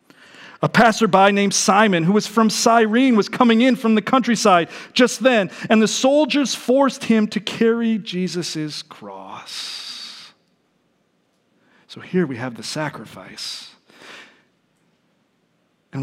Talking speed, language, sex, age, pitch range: 120 wpm, English, male, 40-59, 140-225 Hz